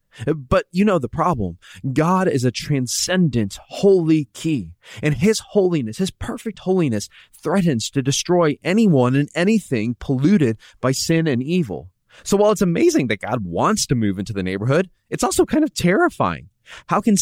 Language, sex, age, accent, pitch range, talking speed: English, male, 20-39, American, 115-185 Hz, 165 wpm